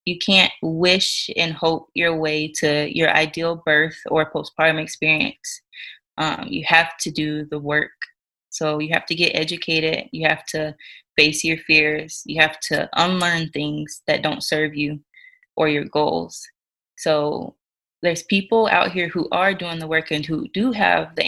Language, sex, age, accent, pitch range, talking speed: English, female, 20-39, American, 155-175 Hz, 170 wpm